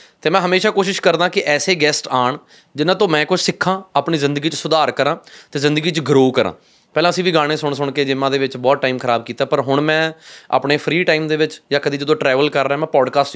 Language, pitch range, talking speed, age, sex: Punjabi, 135-160 Hz, 245 wpm, 20-39, male